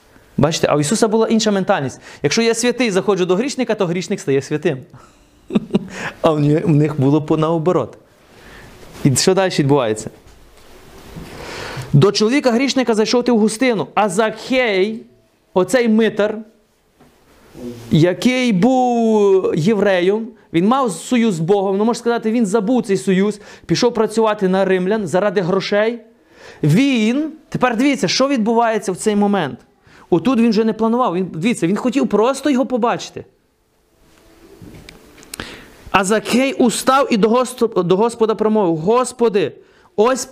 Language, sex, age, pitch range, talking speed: Ukrainian, male, 30-49, 185-235 Hz, 130 wpm